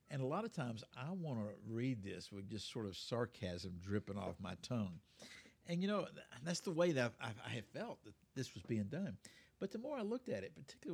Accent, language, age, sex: American, English, 60-79, male